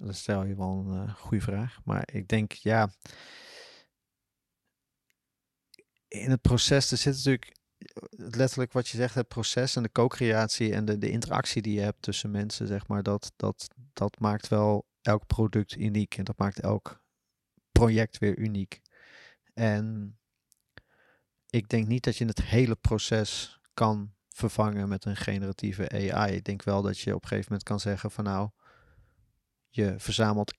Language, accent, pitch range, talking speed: Dutch, Dutch, 100-115 Hz, 165 wpm